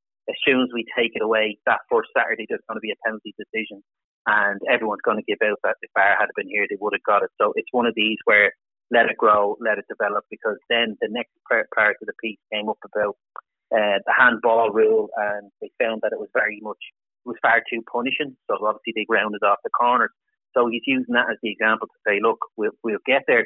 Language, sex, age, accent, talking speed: English, male, 30-49, Irish, 245 wpm